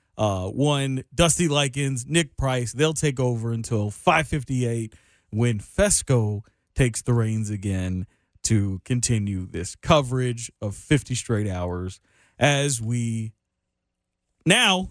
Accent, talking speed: American, 115 wpm